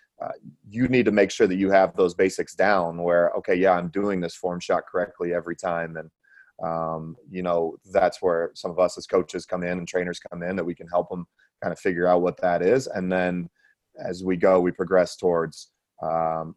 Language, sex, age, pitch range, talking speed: English, male, 30-49, 85-95 Hz, 220 wpm